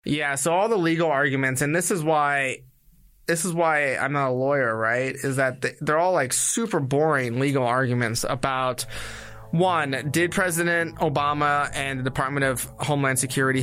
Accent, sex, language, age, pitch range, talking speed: American, male, English, 20-39, 130-160 Hz, 165 wpm